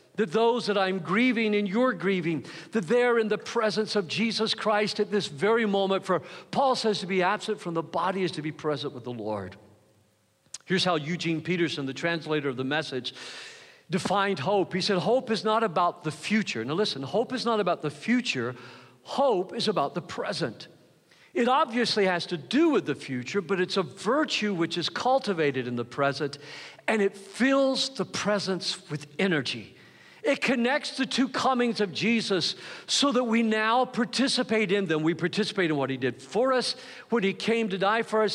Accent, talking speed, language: American, 190 wpm, English